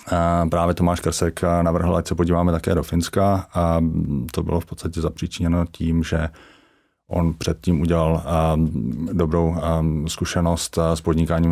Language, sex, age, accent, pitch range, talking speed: Czech, male, 30-49, native, 80-85 Hz, 135 wpm